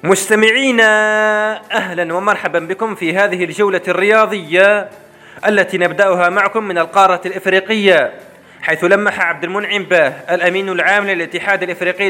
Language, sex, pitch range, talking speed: Arabic, male, 170-205 Hz, 115 wpm